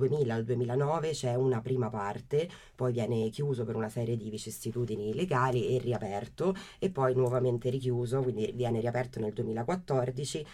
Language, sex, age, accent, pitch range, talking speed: Italian, female, 20-39, native, 110-125 Hz, 140 wpm